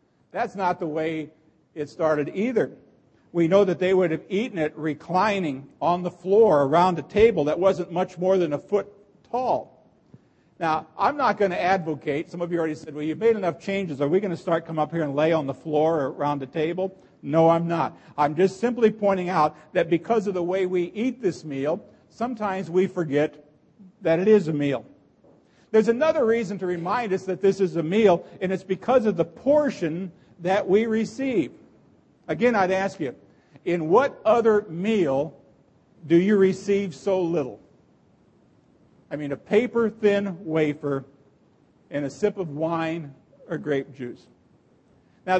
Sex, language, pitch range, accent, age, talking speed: male, English, 160-200 Hz, American, 50-69, 175 wpm